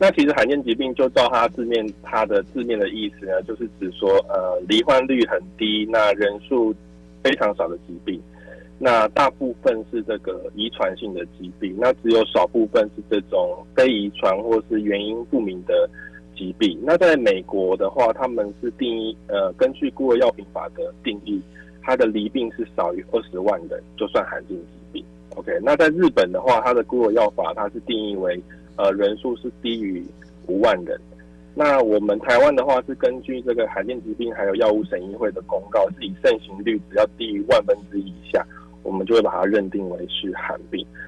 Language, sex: Chinese, male